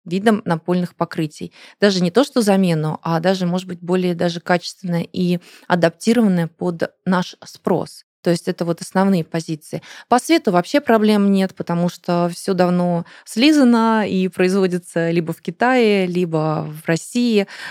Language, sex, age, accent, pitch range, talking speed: Russian, female, 20-39, native, 175-205 Hz, 150 wpm